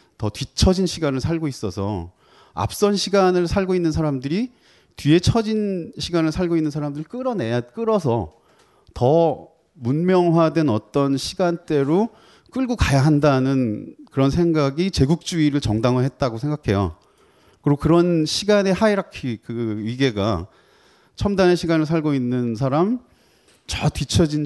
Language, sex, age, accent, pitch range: Korean, male, 30-49, native, 115-170 Hz